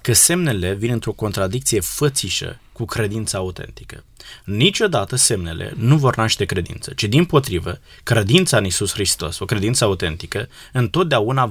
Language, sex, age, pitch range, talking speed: Romanian, male, 20-39, 110-145 Hz, 135 wpm